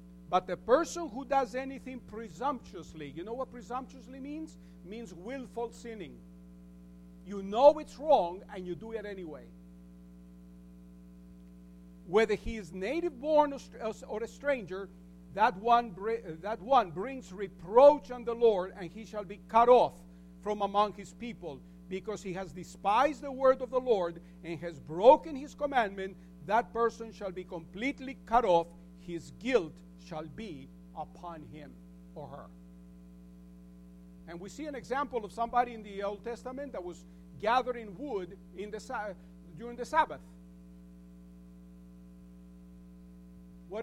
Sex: male